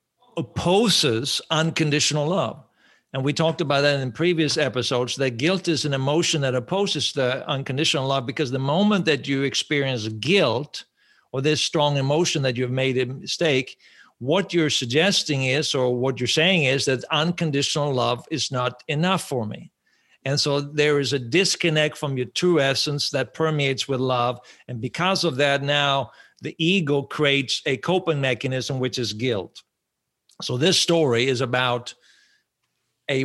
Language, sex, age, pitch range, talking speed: English, male, 50-69, 125-155 Hz, 160 wpm